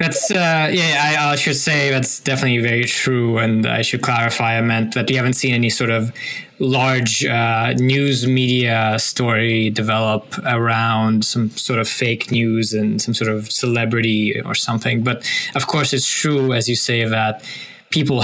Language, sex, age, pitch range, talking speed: English, male, 20-39, 110-130 Hz, 175 wpm